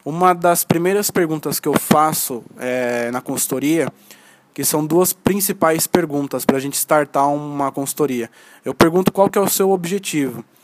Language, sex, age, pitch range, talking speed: Portuguese, male, 20-39, 145-185 Hz, 150 wpm